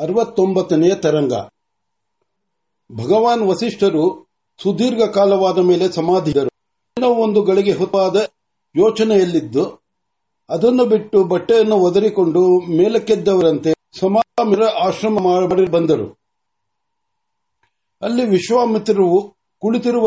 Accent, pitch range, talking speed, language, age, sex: native, 180-230 Hz, 40 wpm, Marathi, 60-79, male